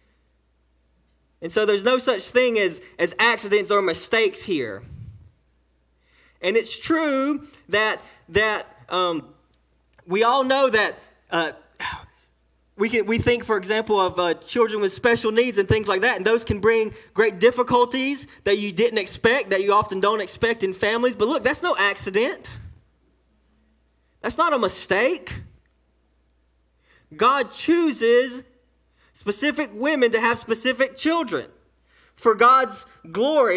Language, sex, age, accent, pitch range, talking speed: English, male, 20-39, American, 185-250 Hz, 135 wpm